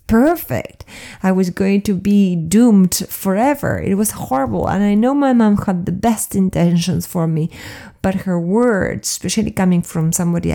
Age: 30-49